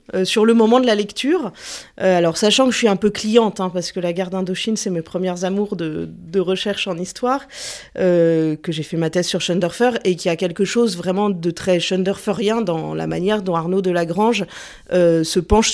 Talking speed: 225 wpm